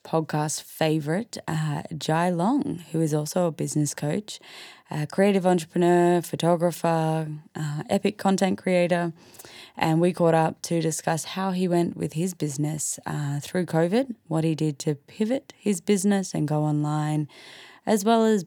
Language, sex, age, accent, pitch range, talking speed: English, female, 20-39, Australian, 155-180 Hz, 155 wpm